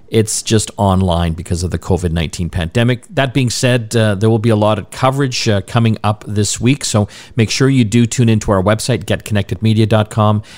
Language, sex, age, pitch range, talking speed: English, male, 50-69, 100-125 Hz, 195 wpm